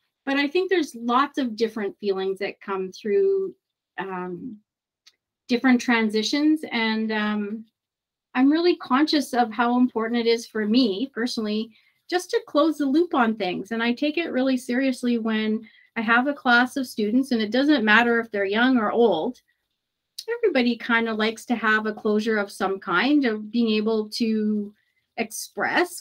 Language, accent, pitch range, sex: English, American, 210-255 Hz, female